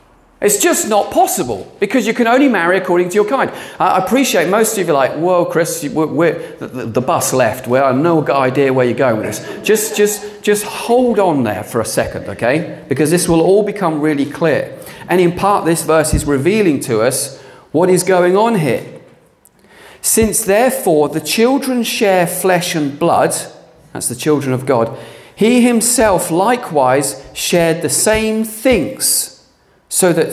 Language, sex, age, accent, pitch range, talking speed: English, male, 40-59, British, 145-205 Hz, 175 wpm